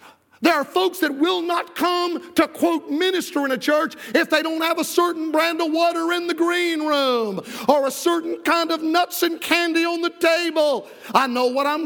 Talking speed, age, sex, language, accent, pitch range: 205 wpm, 50-69, male, English, American, 285-335 Hz